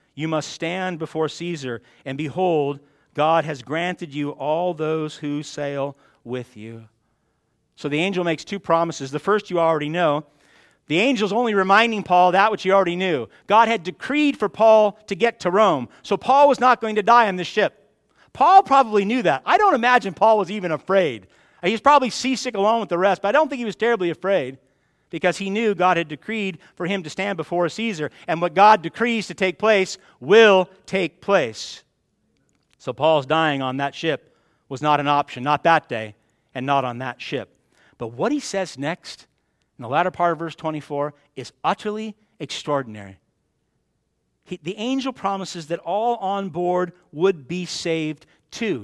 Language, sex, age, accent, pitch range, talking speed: English, male, 40-59, American, 150-205 Hz, 185 wpm